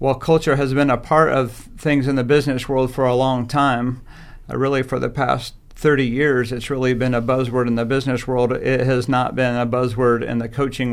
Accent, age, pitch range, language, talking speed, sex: American, 50-69, 120-140 Hz, English, 225 wpm, male